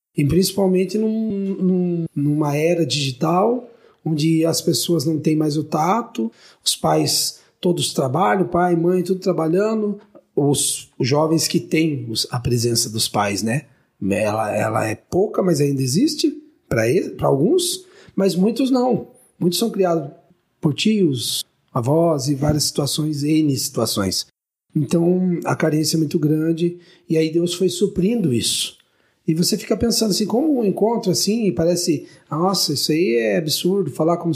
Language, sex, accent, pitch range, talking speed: Portuguese, male, Brazilian, 155-200 Hz, 145 wpm